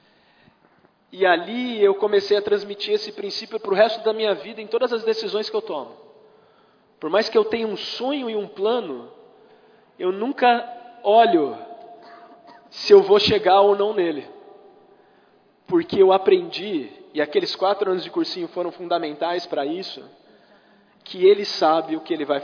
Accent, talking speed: Brazilian, 165 wpm